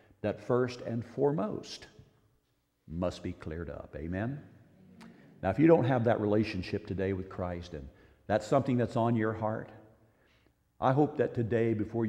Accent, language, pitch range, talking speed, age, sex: American, English, 95-115 Hz, 155 wpm, 50-69, male